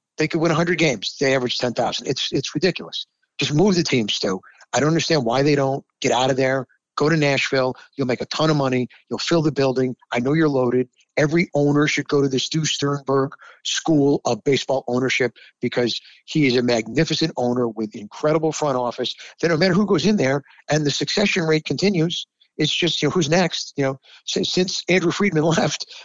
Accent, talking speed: American, 205 wpm